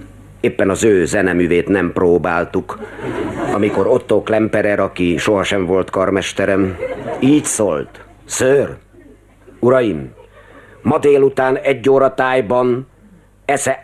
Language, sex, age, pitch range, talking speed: Hungarian, male, 50-69, 110-155 Hz, 100 wpm